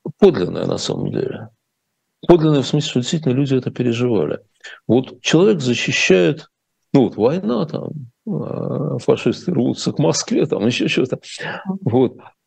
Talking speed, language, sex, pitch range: 130 wpm, Russian, male, 110-155 Hz